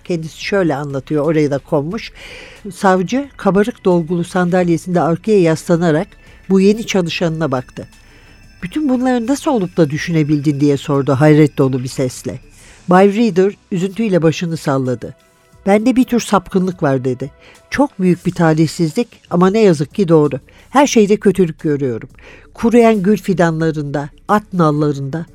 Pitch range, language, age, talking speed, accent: 155-210 Hz, Turkish, 50-69, 135 wpm, native